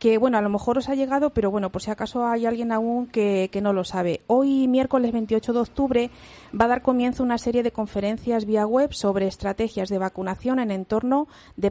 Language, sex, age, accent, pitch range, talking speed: Spanish, female, 40-59, Spanish, 200-255 Hz, 220 wpm